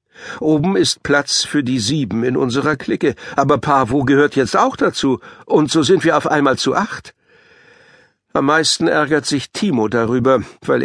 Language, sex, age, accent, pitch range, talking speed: German, male, 60-79, German, 120-145 Hz, 165 wpm